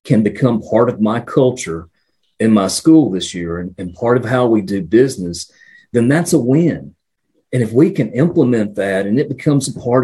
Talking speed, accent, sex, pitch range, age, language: 205 wpm, American, male, 105-130 Hz, 40-59, English